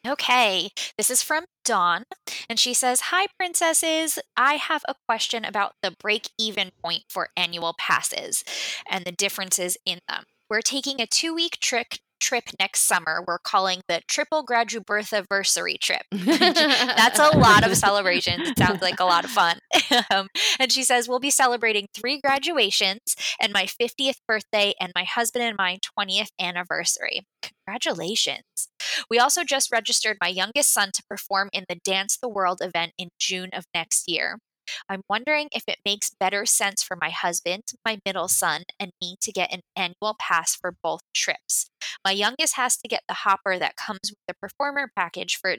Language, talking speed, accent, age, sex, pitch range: English, 175 wpm, American, 20-39, female, 185-245 Hz